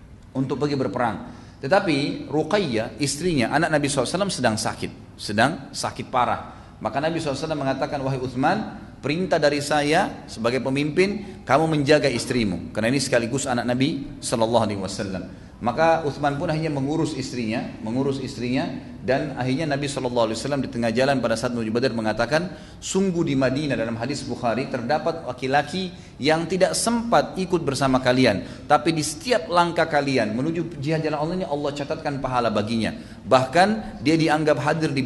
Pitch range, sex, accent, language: 120-150 Hz, male, native, Indonesian